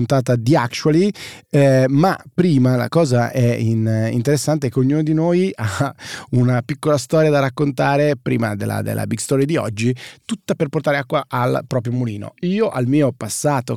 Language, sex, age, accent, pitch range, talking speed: Italian, male, 30-49, native, 115-145 Hz, 165 wpm